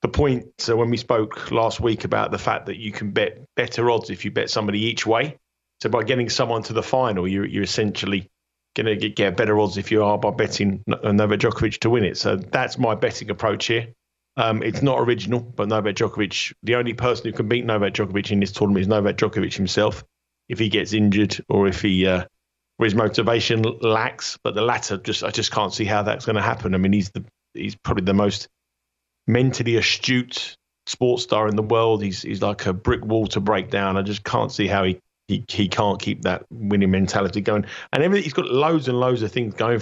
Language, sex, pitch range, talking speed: English, male, 100-115 Hz, 225 wpm